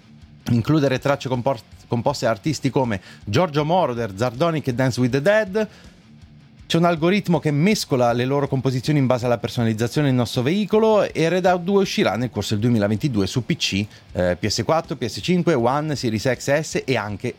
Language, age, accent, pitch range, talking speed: Italian, 30-49, native, 110-160 Hz, 165 wpm